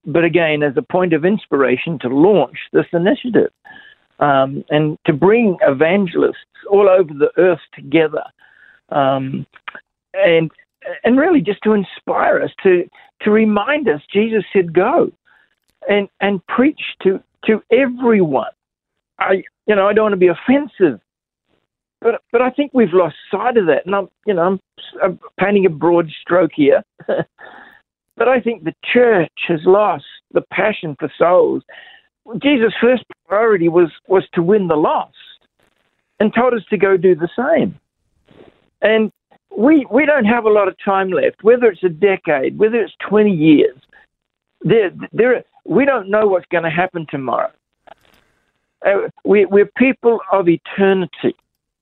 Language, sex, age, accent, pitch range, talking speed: English, male, 50-69, Australian, 175-250 Hz, 155 wpm